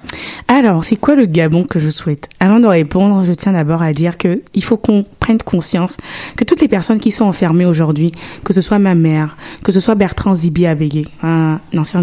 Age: 20-39